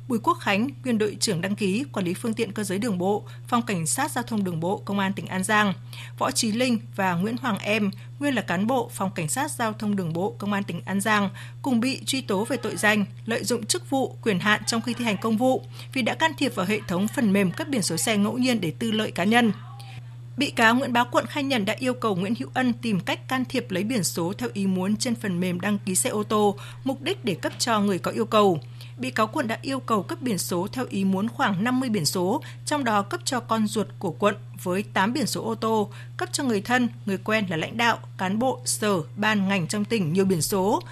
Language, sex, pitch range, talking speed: Vietnamese, female, 180-230 Hz, 260 wpm